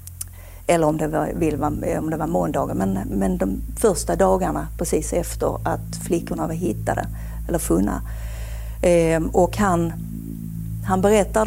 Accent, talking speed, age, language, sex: native, 135 wpm, 50-69, Swedish, female